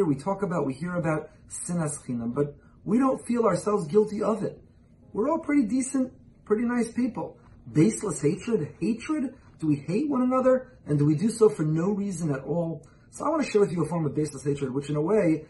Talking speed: 215 wpm